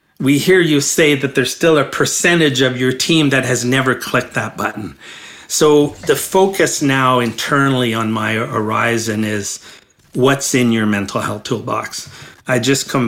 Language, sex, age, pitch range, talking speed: English, male, 40-59, 110-135 Hz, 165 wpm